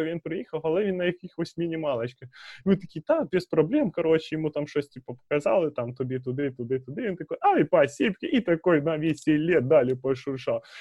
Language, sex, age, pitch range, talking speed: Ukrainian, male, 20-39, 125-160 Hz, 190 wpm